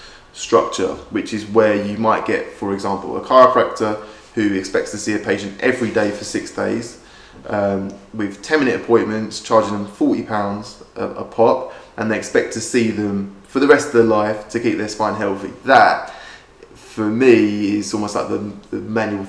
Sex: male